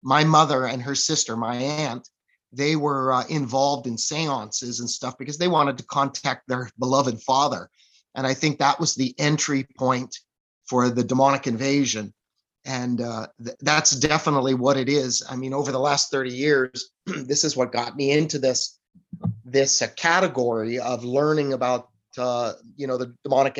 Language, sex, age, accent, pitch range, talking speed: English, male, 30-49, American, 125-140 Hz, 170 wpm